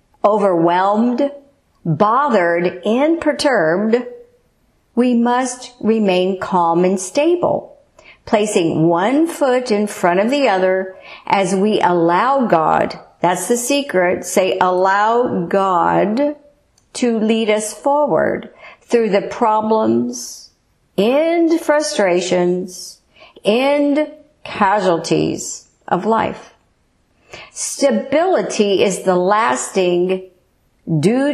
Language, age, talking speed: English, 50-69, 90 wpm